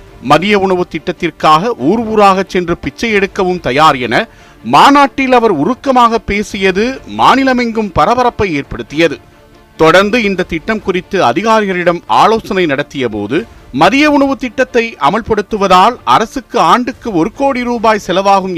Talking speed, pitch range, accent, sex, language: 110 wpm, 160-235 Hz, native, male, Tamil